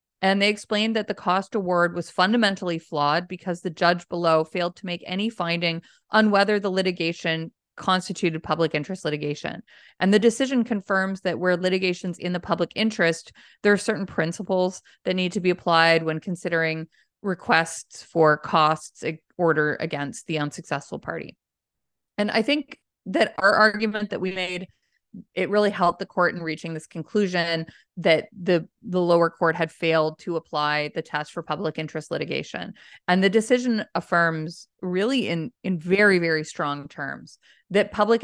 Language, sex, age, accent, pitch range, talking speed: English, female, 30-49, American, 165-200 Hz, 160 wpm